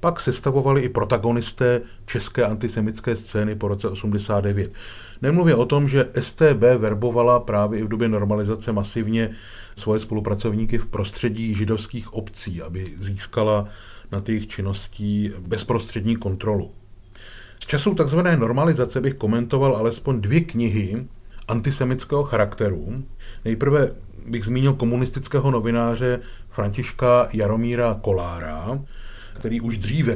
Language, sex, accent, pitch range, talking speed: Czech, male, native, 105-120 Hz, 115 wpm